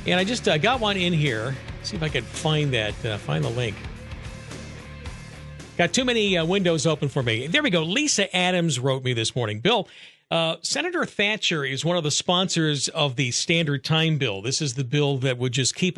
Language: English